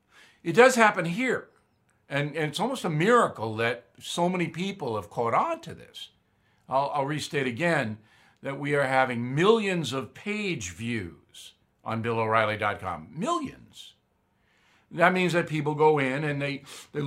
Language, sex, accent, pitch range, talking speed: English, male, American, 125-160 Hz, 150 wpm